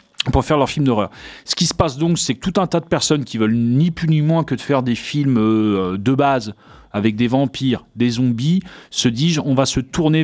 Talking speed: 240 wpm